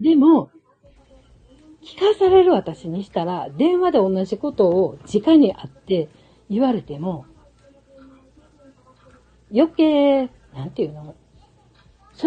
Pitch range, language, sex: 160-265 Hz, Japanese, female